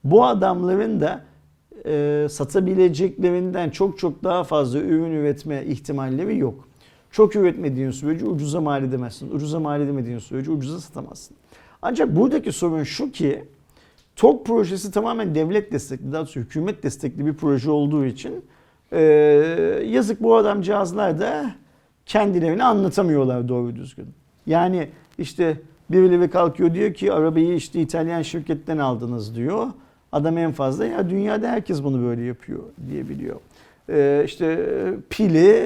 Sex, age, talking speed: male, 50-69, 130 wpm